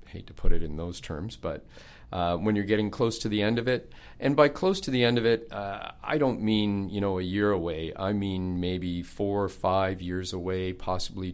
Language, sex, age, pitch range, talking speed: English, male, 40-59, 90-105 Hz, 235 wpm